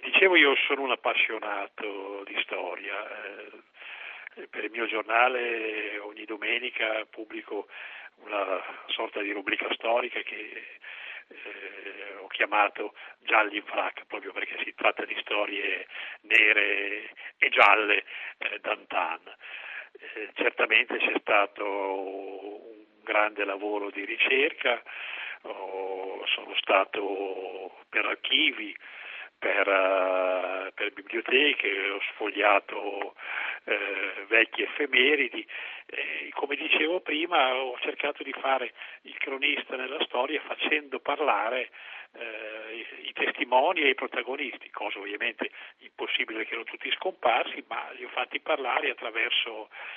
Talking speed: 115 wpm